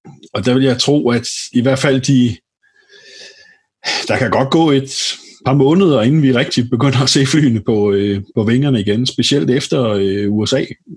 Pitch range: 110-140 Hz